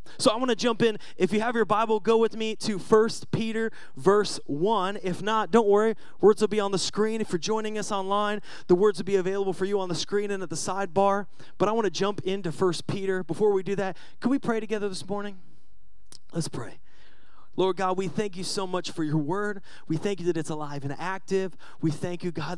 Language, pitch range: English, 155-200 Hz